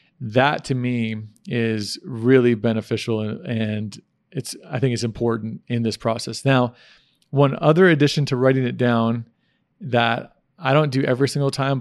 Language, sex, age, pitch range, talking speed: English, male, 40-59, 120-135 Hz, 150 wpm